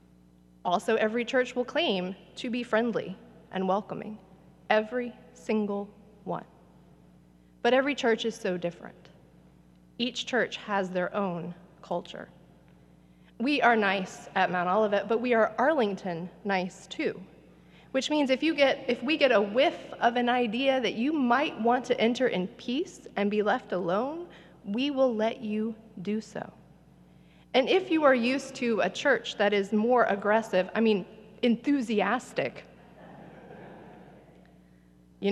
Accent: American